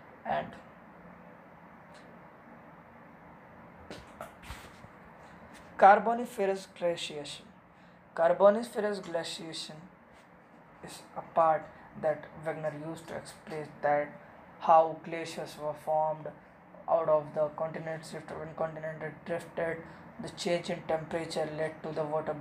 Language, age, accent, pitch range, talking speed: English, 20-39, Indian, 155-195 Hz, 90 wpm